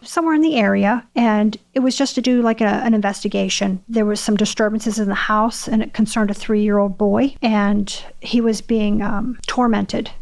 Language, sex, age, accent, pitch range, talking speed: English, female, 40-59, American, 205-235 Hz, 205 wpm